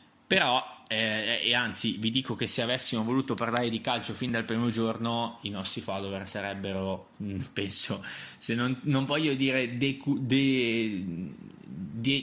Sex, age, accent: male, 20-39, native